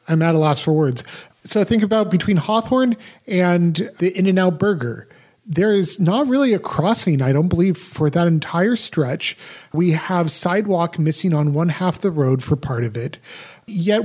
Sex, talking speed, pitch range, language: male, 180 wpm, 150-185 Hz, English